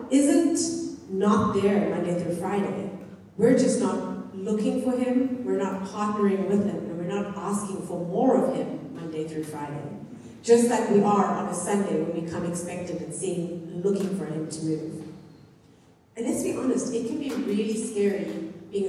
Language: English